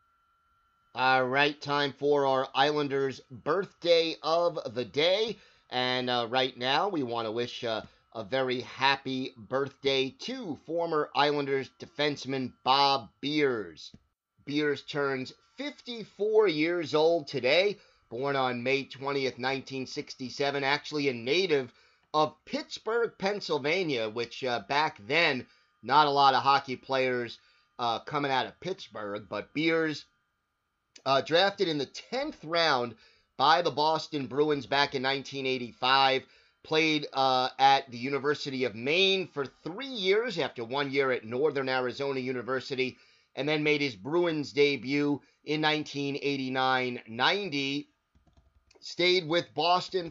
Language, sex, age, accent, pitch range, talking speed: English, male, 30-49, American, 130-160 Hz, 125 wpm